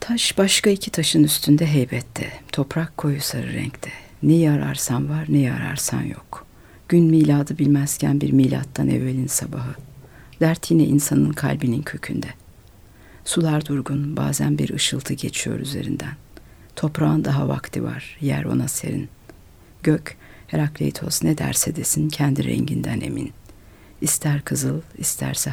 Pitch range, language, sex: 120-155 Hz, Turkish, female